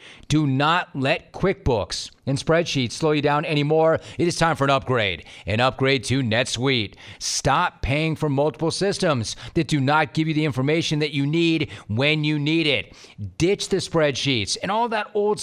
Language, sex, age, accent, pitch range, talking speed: English, male, 40-59, American, 125-155 Hz, 180 wpm